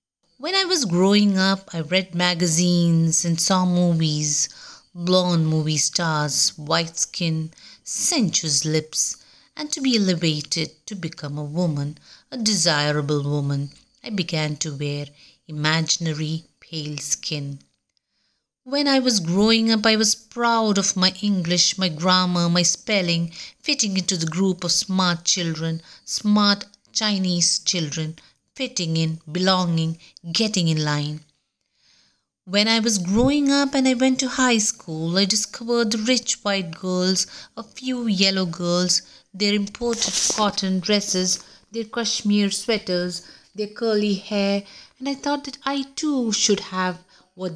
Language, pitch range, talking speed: English, 165-210 Hz, 135 wpm